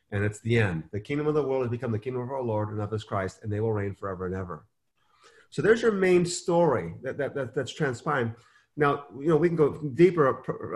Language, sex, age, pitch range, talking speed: English, male, 30-49, 120-155 Hz, 245 wpm